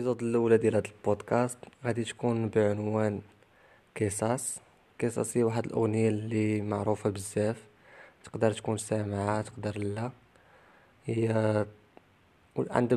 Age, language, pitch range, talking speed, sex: 20-39, English, 105-115 Hz, 100 wpm, male